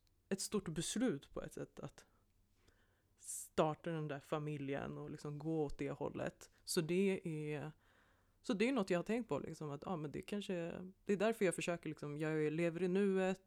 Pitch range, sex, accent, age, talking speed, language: 140-165 Hz, female, native, 30-49, 195 wpm, Swedish